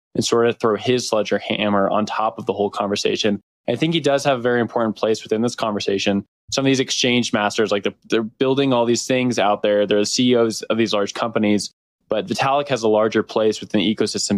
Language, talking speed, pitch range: English, 225 wpm, 100-120 Hz